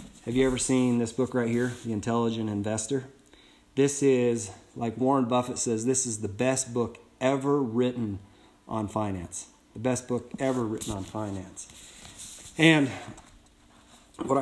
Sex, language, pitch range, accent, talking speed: male, English, 115-135 Hz, American, 145 wpm